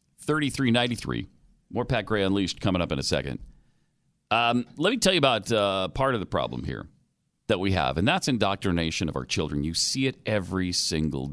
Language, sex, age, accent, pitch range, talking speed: English, male, 40-59, American, 95-135 Hz, 195 wpm